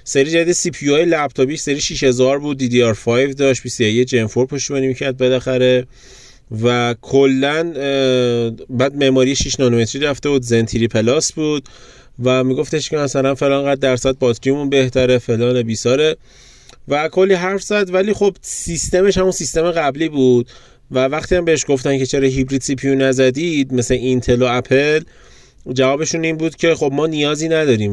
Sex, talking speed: male, 155 wpm